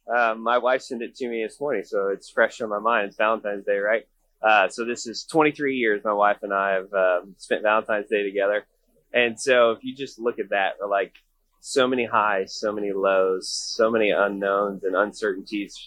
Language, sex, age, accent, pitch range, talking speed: English, male, 20-39, American, 100-140 Hz, 210 wpm